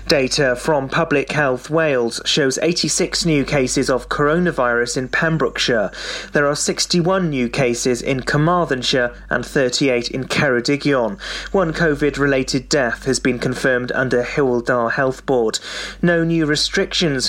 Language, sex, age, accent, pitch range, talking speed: English, male, 30-49, British, 125-155 Hz, 130 wpm